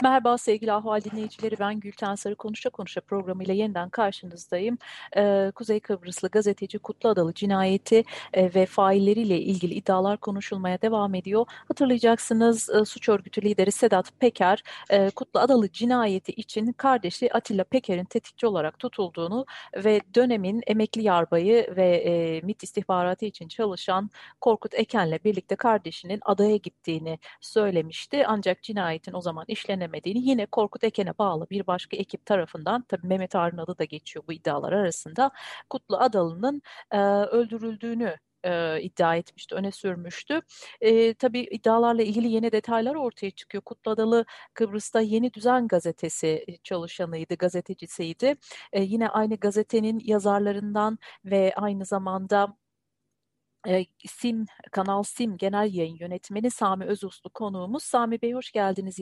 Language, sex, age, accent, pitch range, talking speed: Turkish, female, 40-59, native, 185-225 Hz, 135 wpm